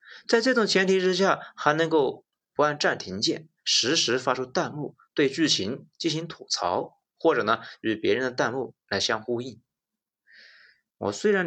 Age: 20-39